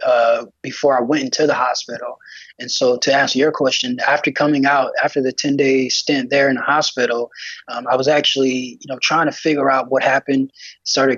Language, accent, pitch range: English, American, 125-145 Hz